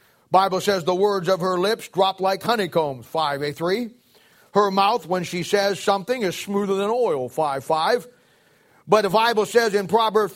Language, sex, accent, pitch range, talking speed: English, male, American, 165-205 Hz, 170 wpm